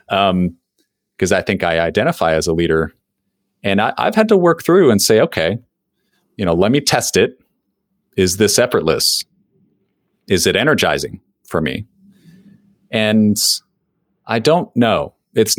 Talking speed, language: 145 wpm, English